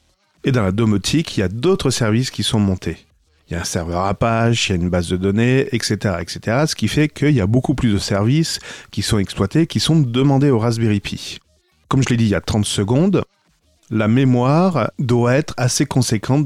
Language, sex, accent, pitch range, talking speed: French, male, French, 100-135 Hz, 220 wpm